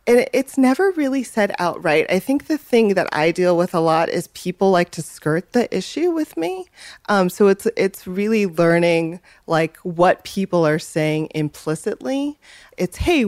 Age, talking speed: 30-49, 175 wpm